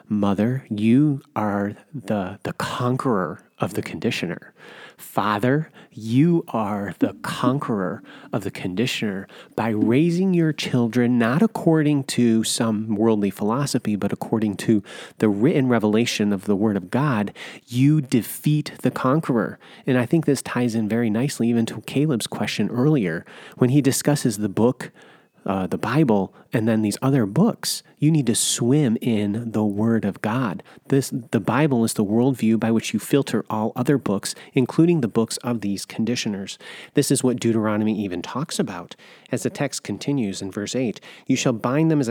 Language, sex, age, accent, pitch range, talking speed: English, male, 30-49, American, 110-140 Hz, 165 wpm